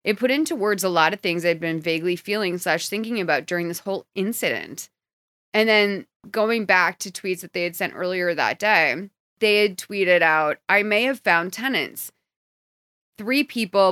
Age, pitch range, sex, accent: 30-49, 175-220 Hz, female, American